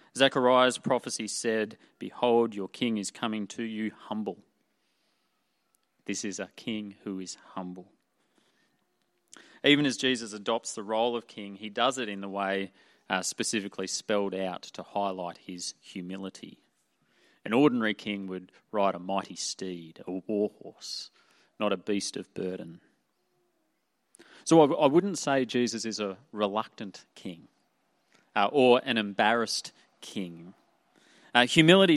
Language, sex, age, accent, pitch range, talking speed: English, male, 30-49, Australian, 95-120 Hz, 140 wpm